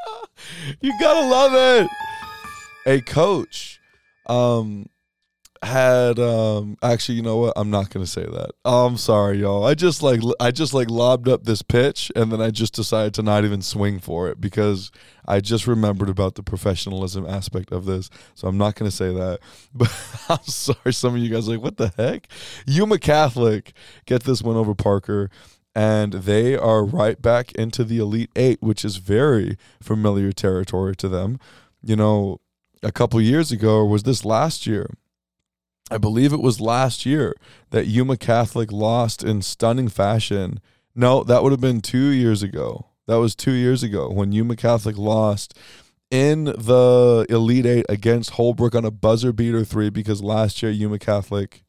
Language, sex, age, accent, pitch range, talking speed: English, male, 20-39, American, 105-125 Hz, 175 wpm